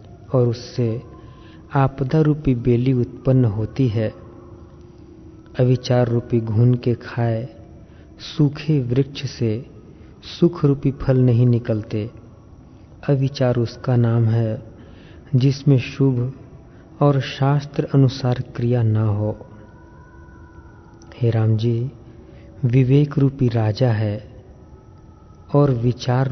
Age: 40-59